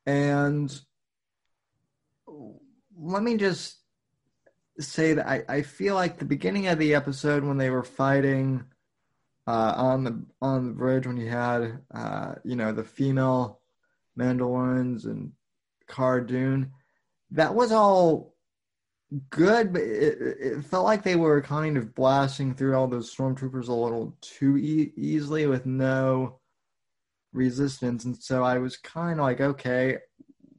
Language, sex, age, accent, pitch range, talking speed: English, male, 20-39, American, 125-145 Hz, 135 wpm